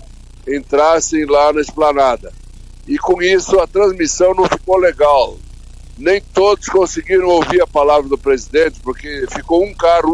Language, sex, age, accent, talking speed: Portuguese, male, 60-79, Brazilian, 140 wpm